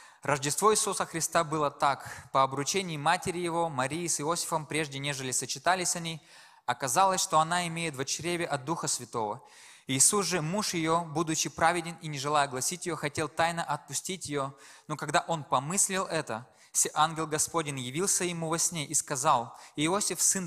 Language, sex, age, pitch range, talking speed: Russian, male, 20-39, 145-170 Hz, 160 wpm